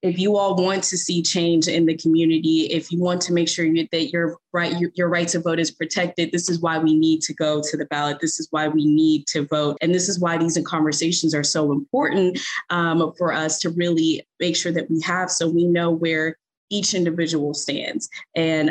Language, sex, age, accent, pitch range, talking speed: English, female, 20-39, American, 150-170 Hz, 220 wpm